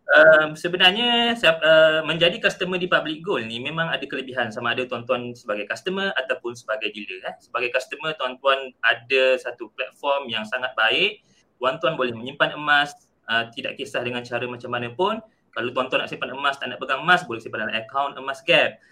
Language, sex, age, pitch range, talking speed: Malay, male, 20-39, 130-165 Hz, 180 wpm